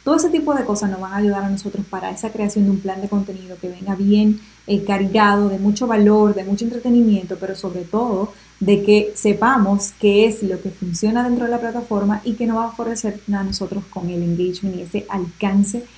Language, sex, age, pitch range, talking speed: Spanish, female, 10-29, 195-220 Hz, 220 wpm